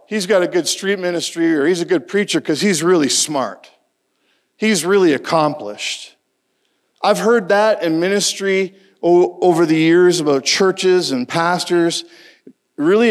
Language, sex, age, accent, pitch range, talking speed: English, male, 50-69, American, 155-200 Hz, 145 wpm